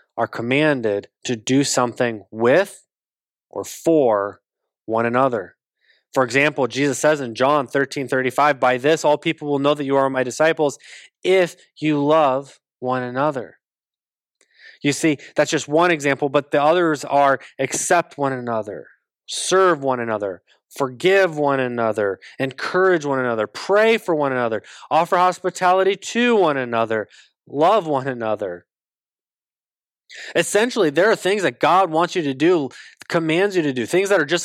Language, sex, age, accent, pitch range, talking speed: English, male, 20-39, American, 135-180 Hz, 150 wpm